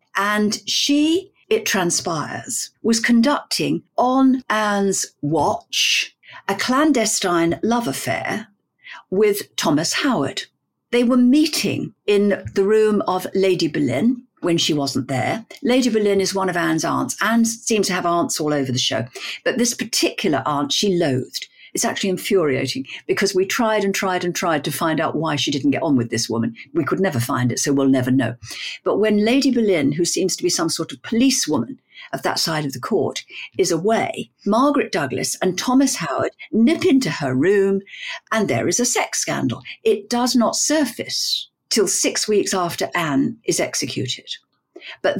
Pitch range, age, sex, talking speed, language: 175-250 Hz, 50-69, female, 170 wpm, English